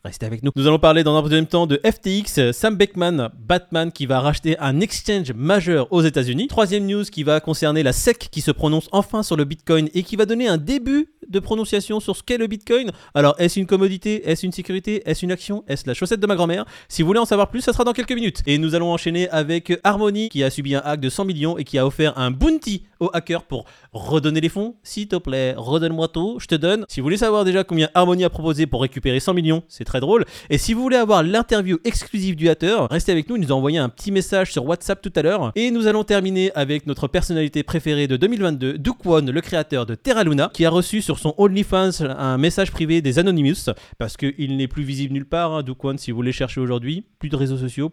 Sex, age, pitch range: male, 30-49, 140-195 Hz